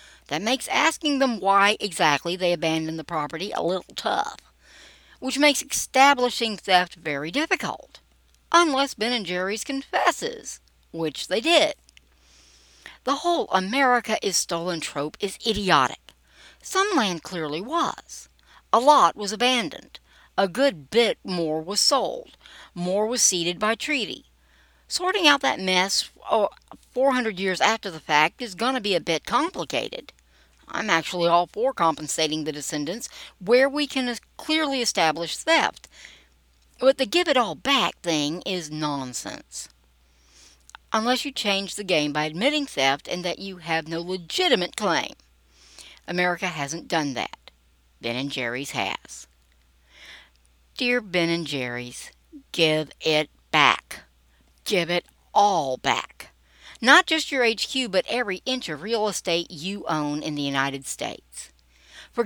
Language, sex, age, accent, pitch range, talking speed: English, female, 60-79, American, 150-245 Hz, 140 wpm